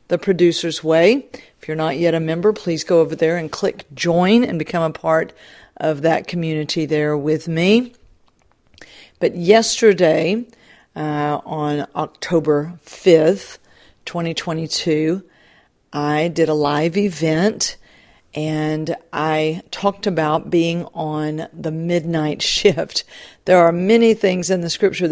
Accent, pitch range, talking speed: American, 160-195 Hz, 130 wpm